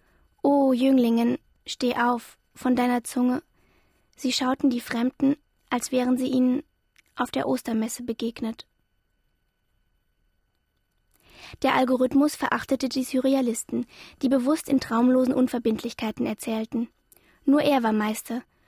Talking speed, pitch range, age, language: 110 wpm, 240-275 Hz, 20-39, German